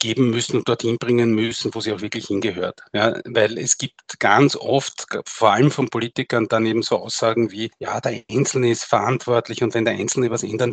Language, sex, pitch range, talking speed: German, male, 115-135 Hz, 200 wpm